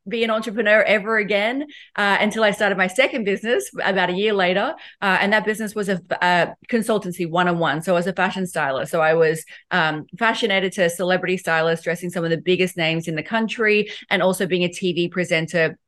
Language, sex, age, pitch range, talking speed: English, female, 30-49, 175-205 Hz, 205 wpm